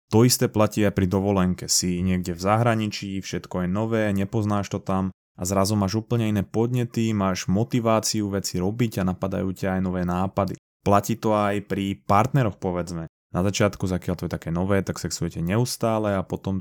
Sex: male